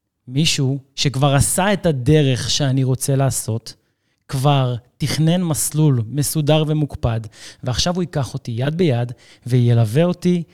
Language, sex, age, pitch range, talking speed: Hebrew, male, 30-49, 120-150 Hz, 120 wpm